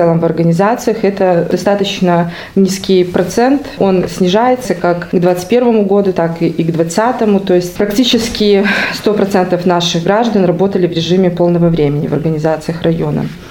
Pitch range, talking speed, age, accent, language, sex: 175-205 Hz, 140 wpm, 20-39, native, Russian, female